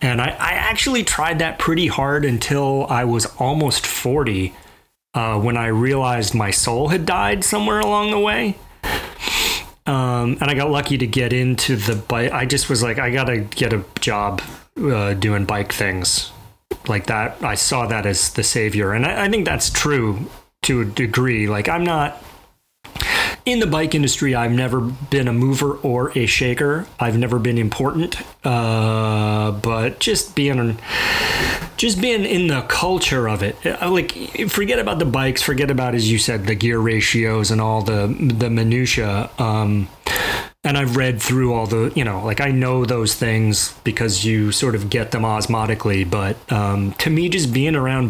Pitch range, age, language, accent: 110-140 Hz, 30-49, English, American